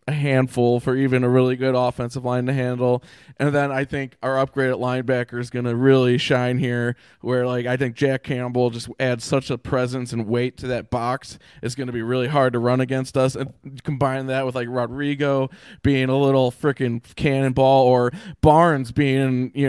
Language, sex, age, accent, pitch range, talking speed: English, male, 20-39, American, 120-140 Hz, 200 wpm